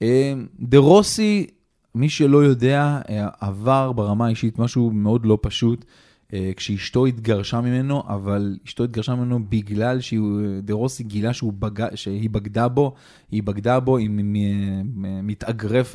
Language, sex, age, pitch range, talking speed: Hebrew, male, 20-39, 110-130 Hz, 120 wpm